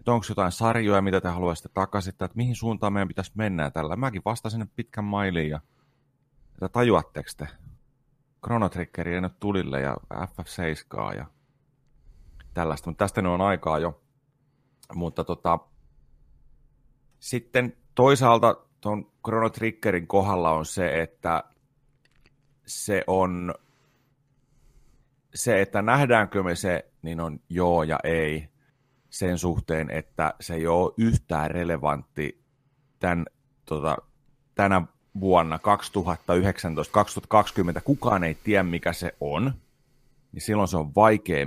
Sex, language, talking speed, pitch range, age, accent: male, Finnish, 115 wpm, 85-115 Hz, 30-49, native